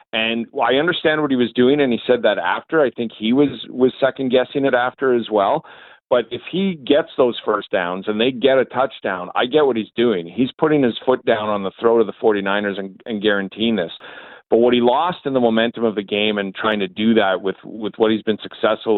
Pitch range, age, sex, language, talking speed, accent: 105-130 Hz, 40-59, male, English, 235 wpm, American